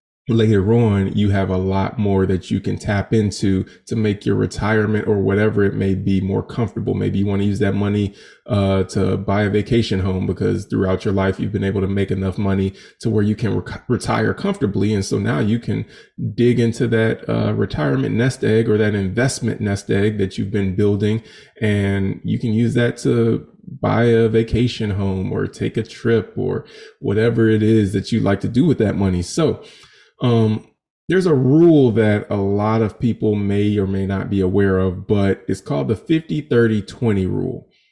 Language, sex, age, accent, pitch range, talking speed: English, male, 20-39, American, 100-120 Hz, 200 wpm